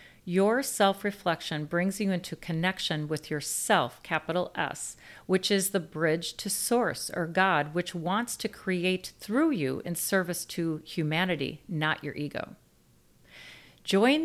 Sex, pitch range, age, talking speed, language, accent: female, 160-200 Hz, 40-59, 135 wpm, English, American